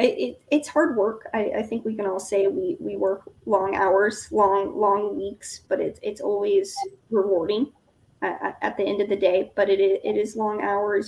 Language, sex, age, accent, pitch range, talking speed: English, female, 20-39, American, 200-260 Hz, 205 wpm